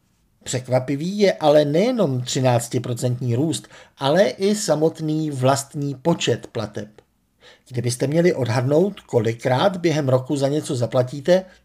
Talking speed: 110 wpm